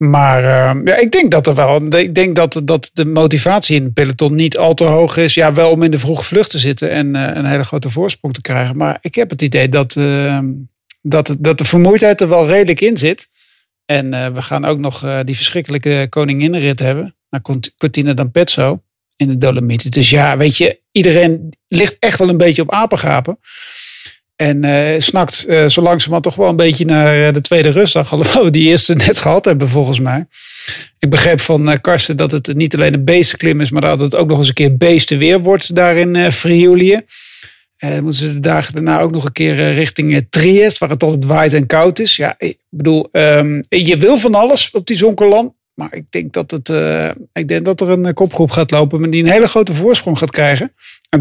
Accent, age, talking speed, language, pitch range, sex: Dutch, 50-69, 220 wpm, English, 145-175 Hz, male